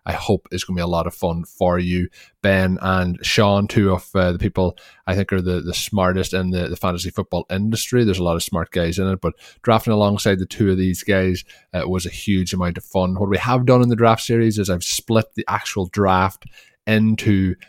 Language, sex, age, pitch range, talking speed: English, male, 20-39, 90-105 Hz, 240 wpm